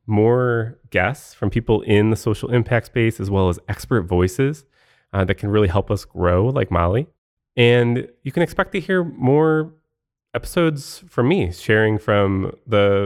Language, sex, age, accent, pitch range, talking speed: English, male, 20-39, American, 95-125 Hz, 165 wpm